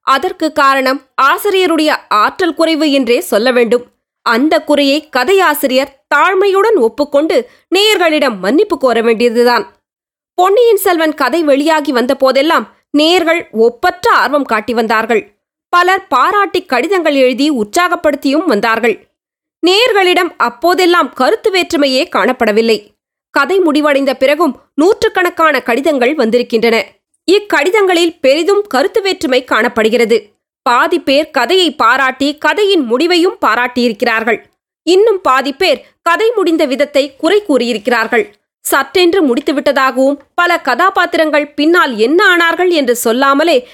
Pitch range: 255-350 Hz